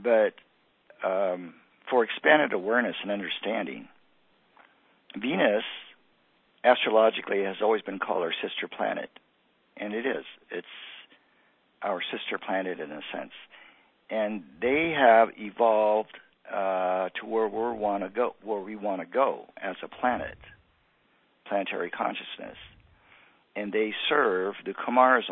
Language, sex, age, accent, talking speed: English, male, 50-69, American, 125 wpm